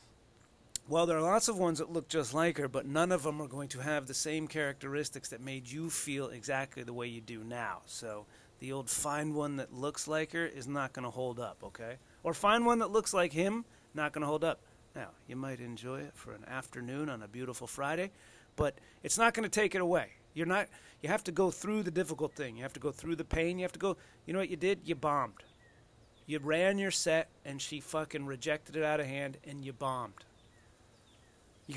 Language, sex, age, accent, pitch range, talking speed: English, male, 30-49, American, 130-180 Hz, 235 wpm